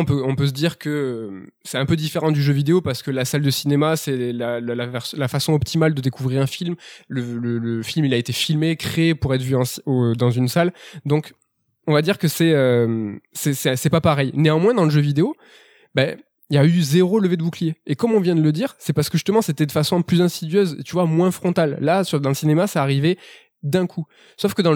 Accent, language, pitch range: French, French, 130-170 Hz